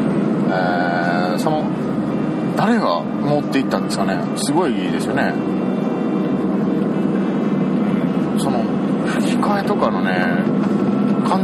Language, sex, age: Japanese, male, 40-59